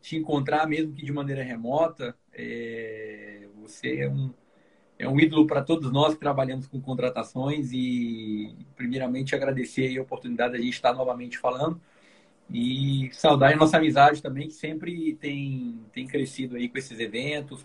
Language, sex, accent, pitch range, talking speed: Portuguese, male, Brazilian, 130-155 Hz, 165 wpm